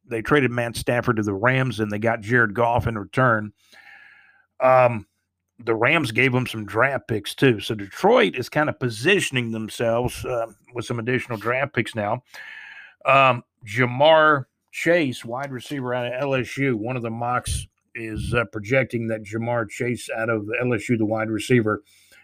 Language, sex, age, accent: English, male, 50-69, American